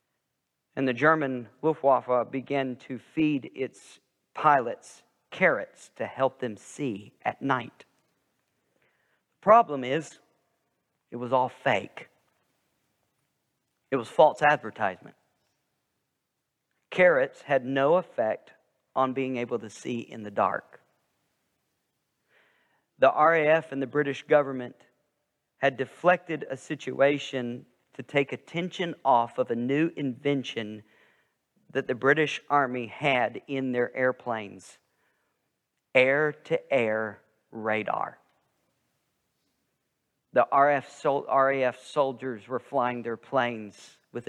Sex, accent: male, American